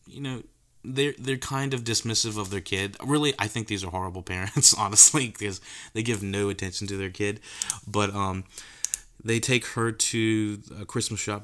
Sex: male